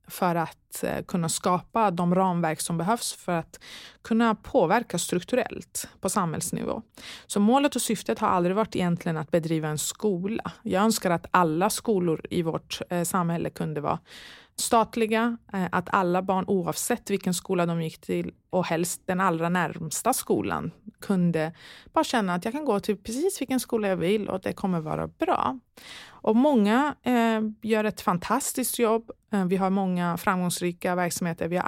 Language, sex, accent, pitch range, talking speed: Swedish, female, native, 175-220 Hz, 160 wpm